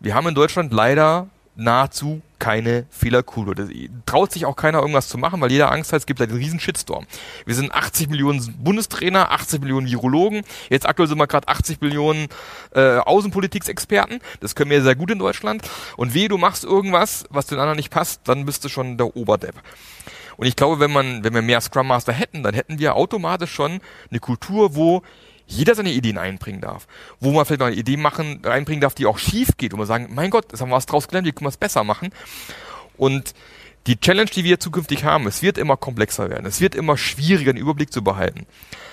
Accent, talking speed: German, 215 wpm